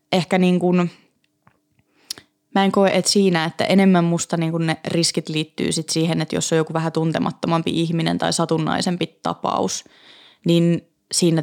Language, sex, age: Finnish, female, 20-39